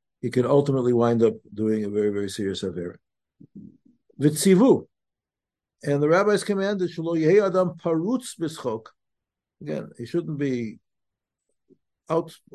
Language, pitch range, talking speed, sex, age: English, 120-165 Hz, 120 wpm, male, 60-79